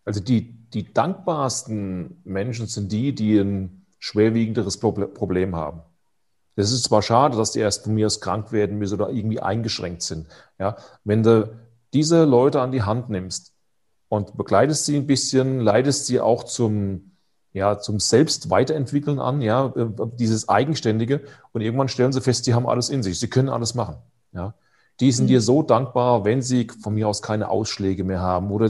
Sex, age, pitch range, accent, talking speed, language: male, 30-49, 105-130 Hz, German, 175 wpm, German